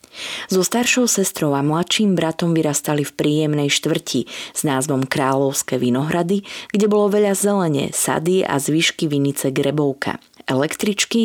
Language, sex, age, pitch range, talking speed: Slovak, female, 30-49, 140-180 Hz, 130 wpm